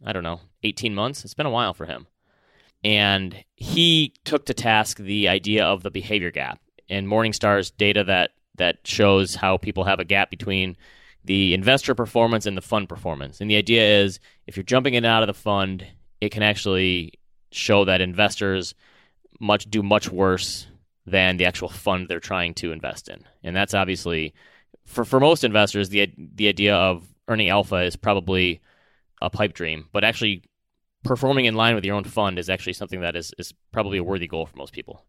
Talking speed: 195 wpm